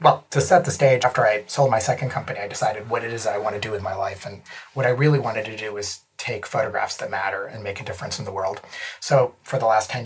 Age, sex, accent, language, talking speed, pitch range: 30-49, male, American, English, 280 wpm, 110-140 Hz